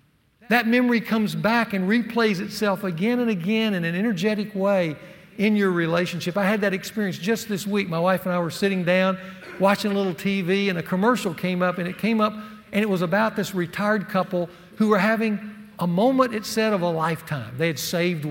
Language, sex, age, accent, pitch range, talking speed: English, male, 60-79, American, 140-190 Hz, 210 wpm